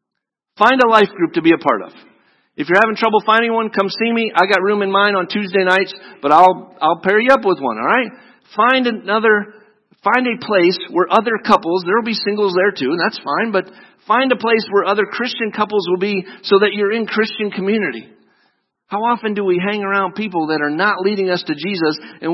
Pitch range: 175-210 Hz